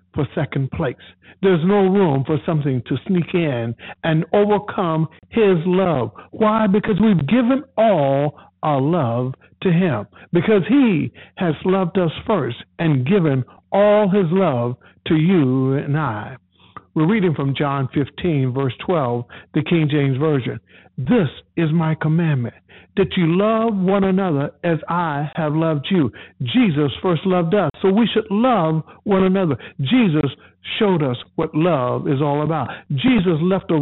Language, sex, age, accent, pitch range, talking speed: English, male, 60-79, American, 135-195 Hz, 150 wpm